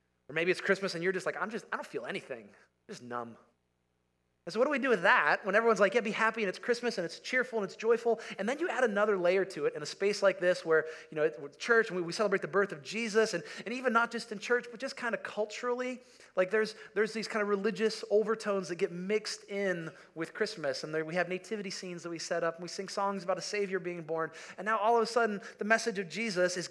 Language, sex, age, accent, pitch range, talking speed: English, male, 30-49, American, 165-215 Hz, 275 wpm